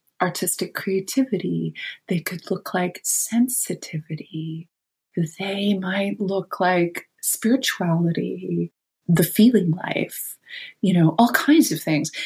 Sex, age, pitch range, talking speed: female, 30-49, 170-230 Hz, 105 wpm